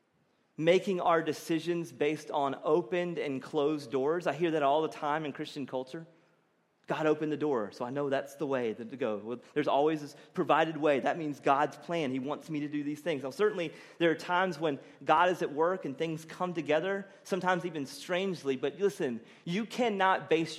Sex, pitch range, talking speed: male, 145-185 Hz, 200 wpm